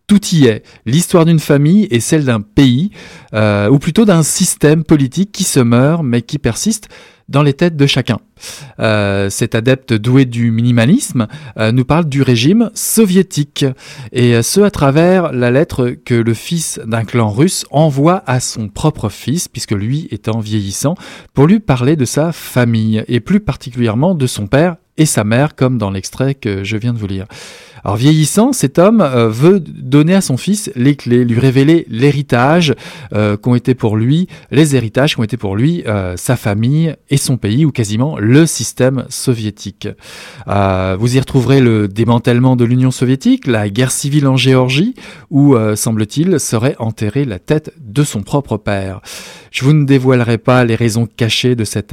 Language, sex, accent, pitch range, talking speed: French, male, French, 115-155 Hz, 180 wpm